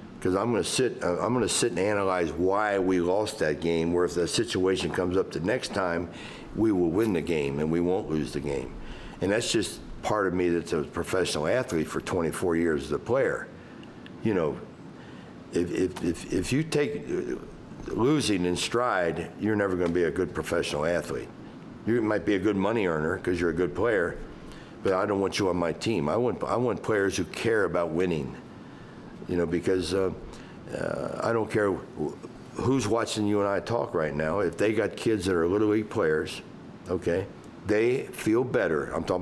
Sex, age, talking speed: male, 60-79, 195 wpm